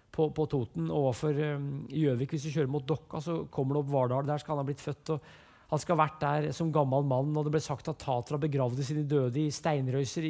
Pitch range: 145-170 Hz